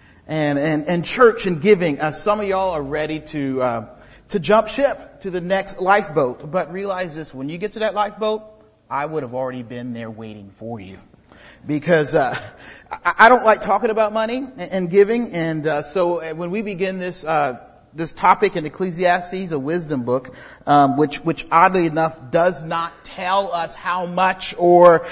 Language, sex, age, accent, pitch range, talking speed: English, male, 40-59, American, 140-190 Hz, 185 wpm